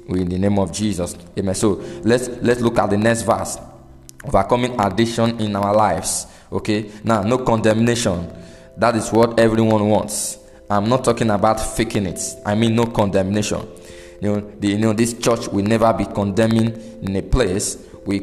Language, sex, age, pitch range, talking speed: English, male, 20-39, 100-115 Hz, 170 wpm